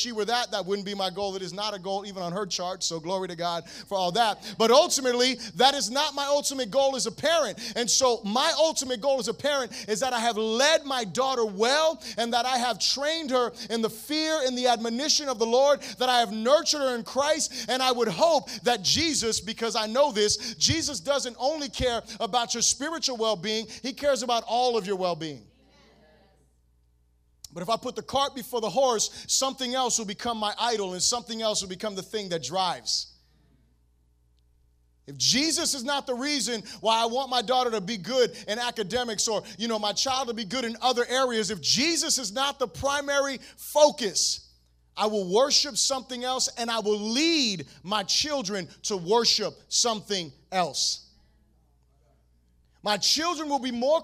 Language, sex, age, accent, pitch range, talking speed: English, male, 30-49, American, 200-265 Hz, 195 wpm